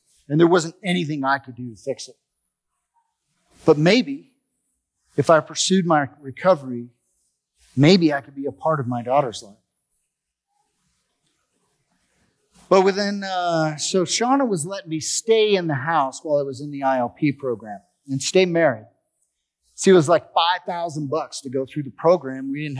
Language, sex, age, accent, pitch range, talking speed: English, male, 40-59, American, 140-200 Hz, 165 wpm